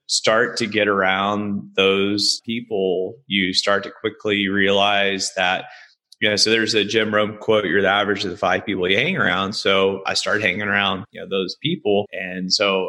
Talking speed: 190 wpm